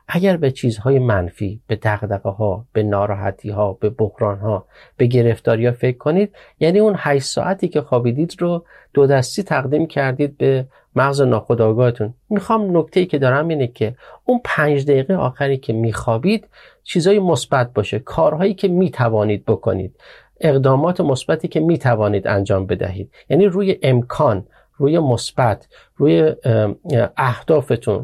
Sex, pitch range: male, 115-170 Hz